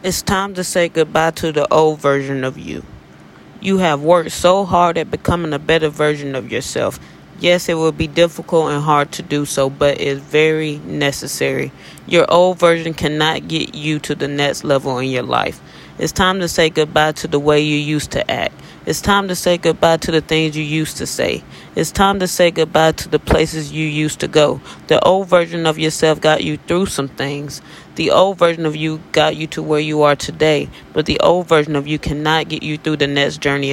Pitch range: 145-170 Hz